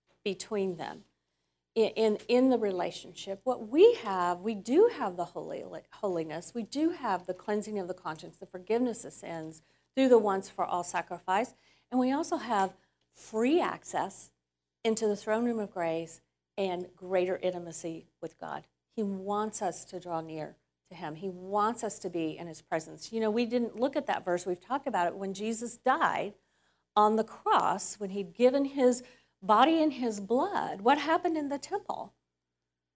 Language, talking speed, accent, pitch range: English, 175 wpm, American, 185-270 Hz